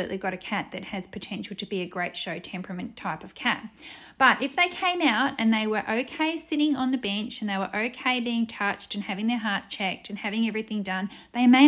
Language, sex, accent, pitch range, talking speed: English, female, Australian, 190-235 Hz, 230 wpm